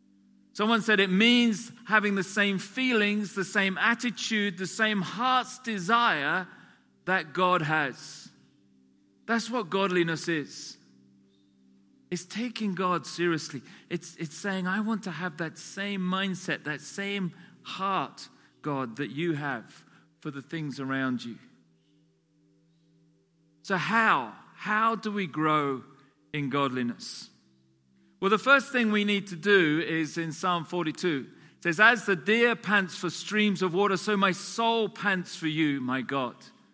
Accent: British